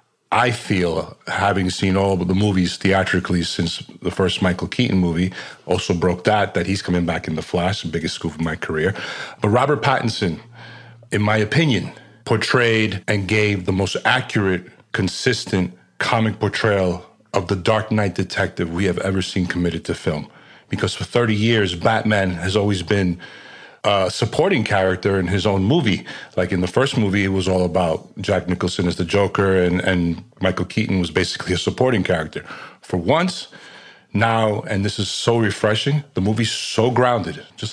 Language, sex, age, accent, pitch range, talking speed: English, male, 40-59, American, 90-110 Hz, 175 wpm